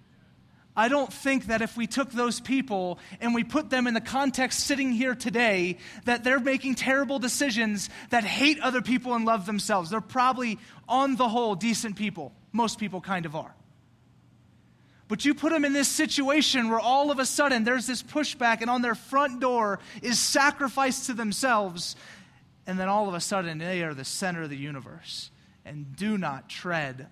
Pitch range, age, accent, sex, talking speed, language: 160-240 Hz, 30-49, American, male, 185 wpm, English